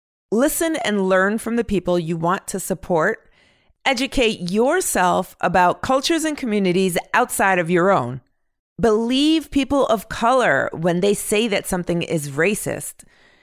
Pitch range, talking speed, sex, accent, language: 185-270 Hz, 140 wpm, female, American, English